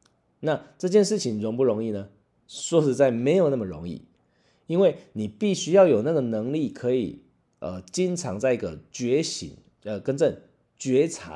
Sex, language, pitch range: male, Chinese, 100-170 Hz